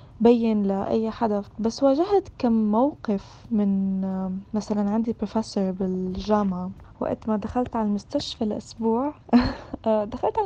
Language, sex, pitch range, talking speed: Arabic, female, 210-255 Hz, 120 wpm